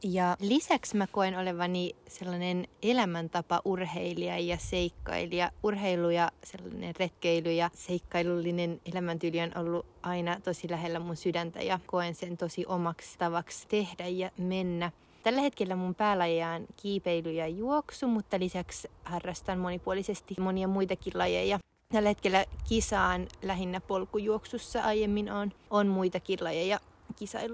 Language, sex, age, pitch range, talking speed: Finnish, female, 20-39, 175-205 Hz, 125 wpm